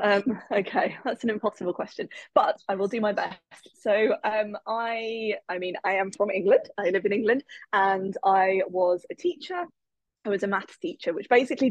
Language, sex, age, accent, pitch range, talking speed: English, female, 20-39, British, 185-225 Hz, 190 wpm